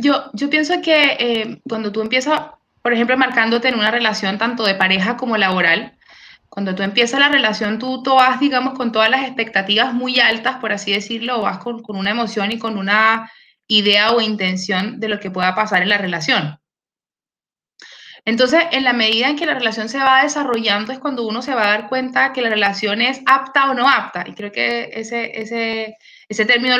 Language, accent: English, Venezuelan